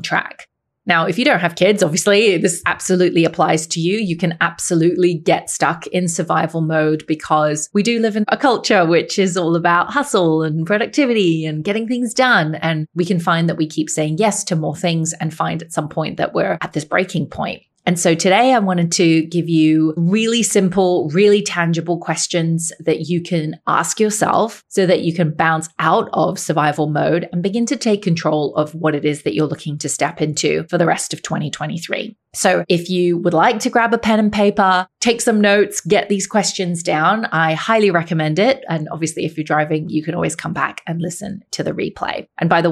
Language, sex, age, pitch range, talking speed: English, female, 30-49, 160-195 Hz, 210 wpm